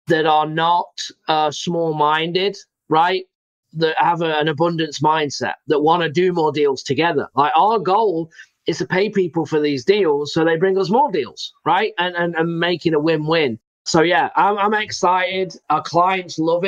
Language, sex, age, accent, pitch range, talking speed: English, male, 40-59, British, 150-180 Hz, 180 wpm